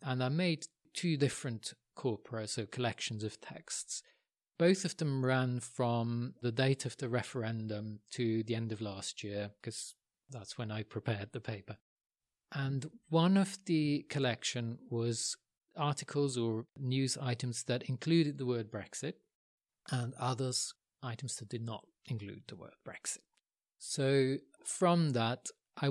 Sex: male